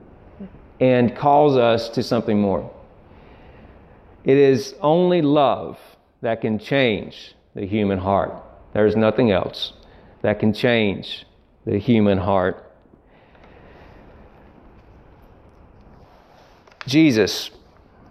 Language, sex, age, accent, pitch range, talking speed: Bengali, male, 40-59, American, 105-135 Hz, 90 wpm